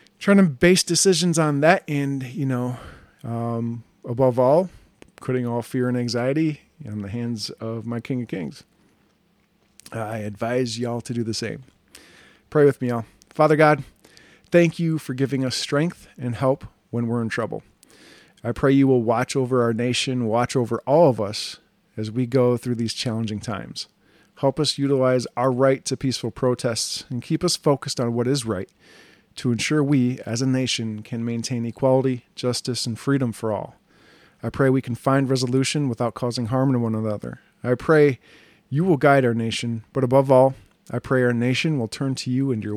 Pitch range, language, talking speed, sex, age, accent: 115-140 Hz, English, 185 wpm, male, 40-59, American